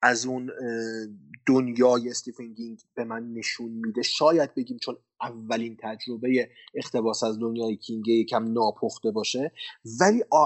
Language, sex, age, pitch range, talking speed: Persian, male, 30-49, 115-165 Hz, 120 wpm